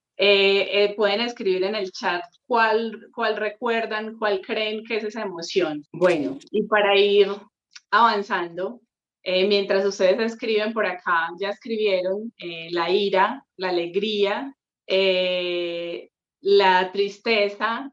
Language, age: English, 30-49